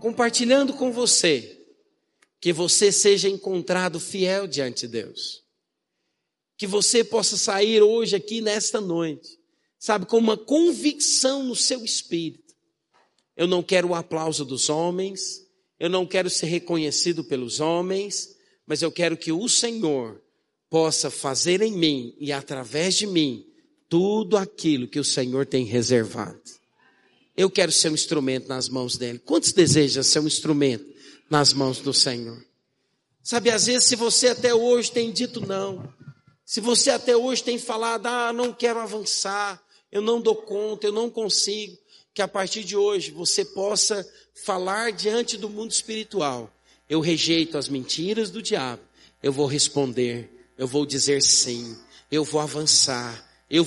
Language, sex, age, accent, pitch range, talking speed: Portuguese, male, 50-69, Brazilian, 145-225 Hz, 150 wpm